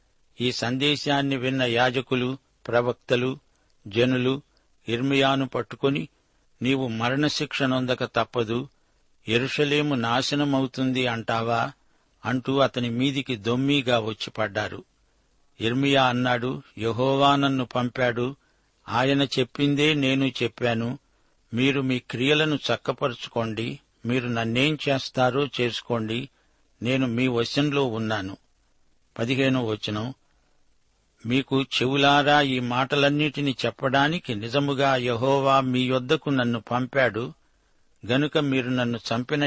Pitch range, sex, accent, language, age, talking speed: 120-140 Hz, male, native, Telugu, 60-79, 80 wpm